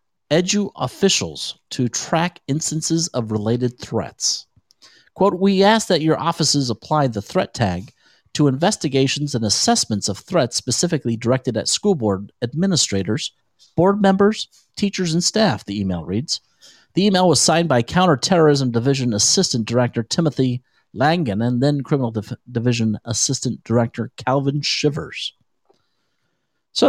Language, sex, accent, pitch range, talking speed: English, male, American, 115-170 Hz, 130 wpm